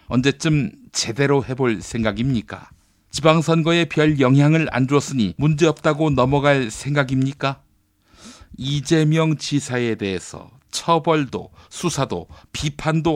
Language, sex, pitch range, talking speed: English, male, 110-145 Hz, 80 wpm